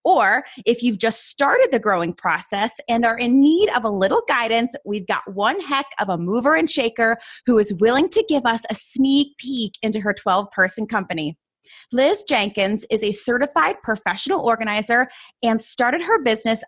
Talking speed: 180 wpm